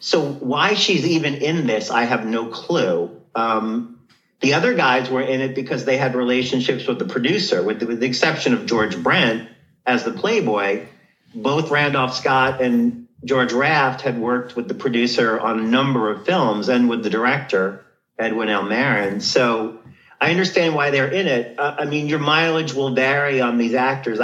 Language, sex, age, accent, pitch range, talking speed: English, male, 40-59, American, 110-135 Hz, 185 wpm